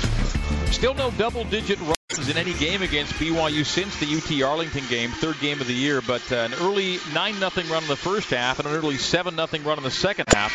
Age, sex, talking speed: 40-59, male, 215 wpm